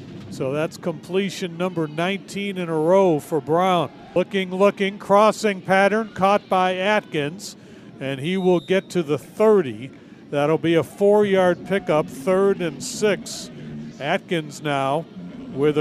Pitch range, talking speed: 165-205 Hz, 135 wpm